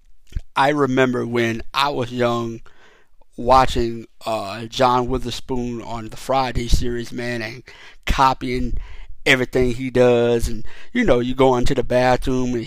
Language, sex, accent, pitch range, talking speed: English, male, American, 120-160 Hz, 135 wpm